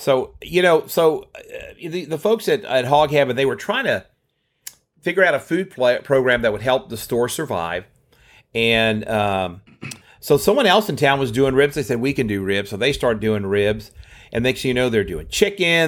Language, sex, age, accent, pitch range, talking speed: English, male, 40-59, American, 110-140 Hz, 215 wpm